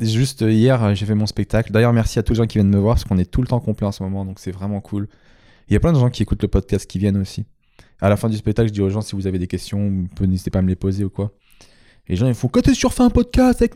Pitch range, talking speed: 105-135 Hz, 340 wpm